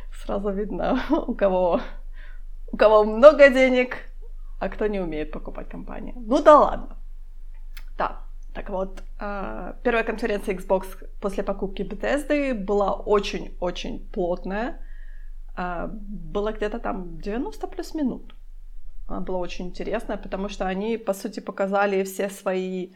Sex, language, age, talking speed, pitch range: female, Ukrainian, 20-39, 120 wpm, 195-230 Hz